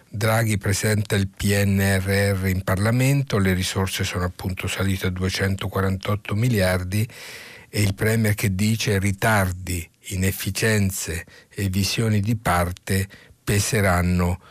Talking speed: 110 wpm